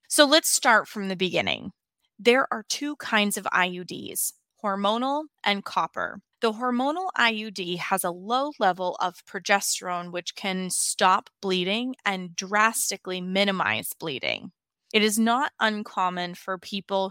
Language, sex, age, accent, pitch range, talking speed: English, female, 20-39, American, 185-225 Hz, 135 wpm